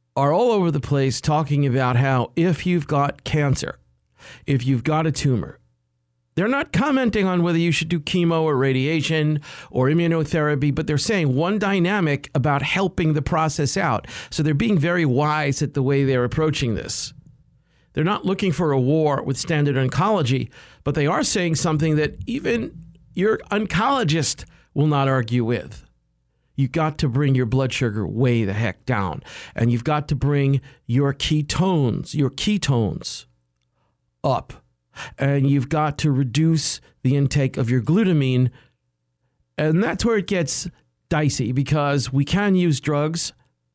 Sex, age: male, 50-69